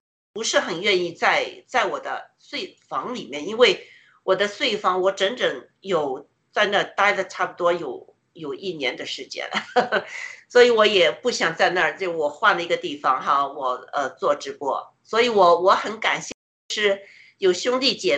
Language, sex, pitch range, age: Chinese, female, 185-295 Hz, 50-69